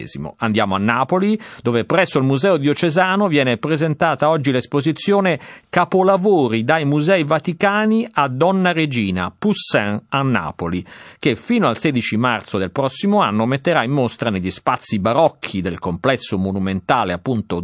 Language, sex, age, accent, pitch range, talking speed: Italian, male, 50-69, native, 105-160 Hz, 135 wpm